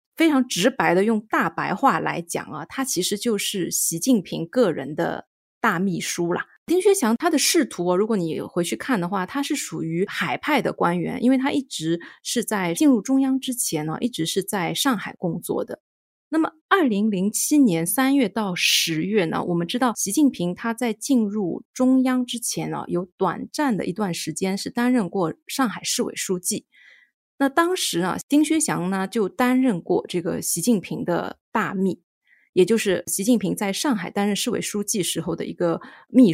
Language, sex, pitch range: Chinese, female, 180-255 Hz